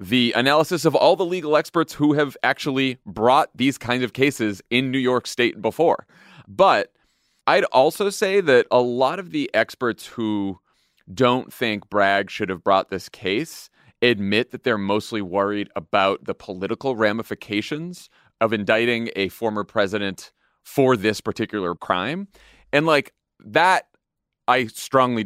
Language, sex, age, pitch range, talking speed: English, male, 30-49, 105-130 Hz, 145 wpm